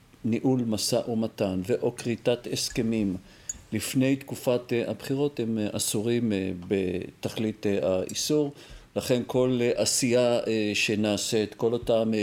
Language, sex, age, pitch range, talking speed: Hebrew, male, 50-69, 110-125 Hz, 95 wpm